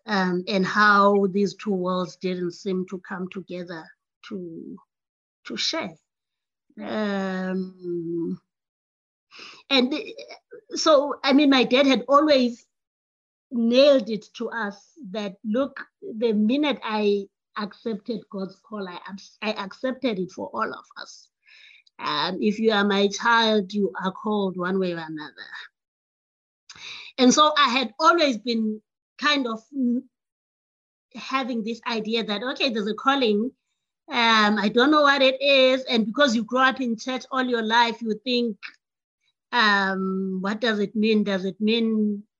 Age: 20-39